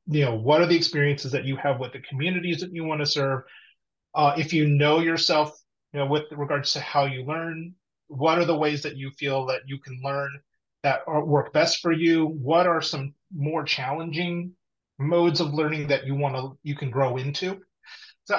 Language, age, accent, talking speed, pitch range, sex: English, 30-49, American, 210 wpm, 135-165 Hz, male